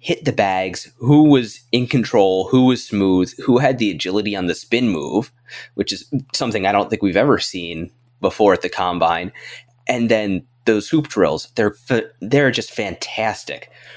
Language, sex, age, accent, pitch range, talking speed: English, male, 20-39, American, 100-125 Hz, 170 wpm